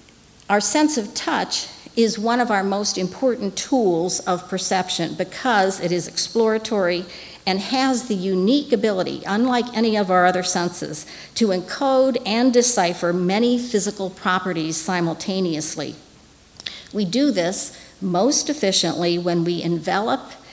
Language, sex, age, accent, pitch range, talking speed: English, female, 50-69, American, 180-230 Hz, 130 wpm